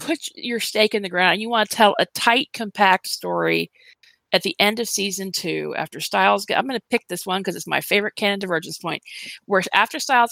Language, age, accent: English, 40-59, American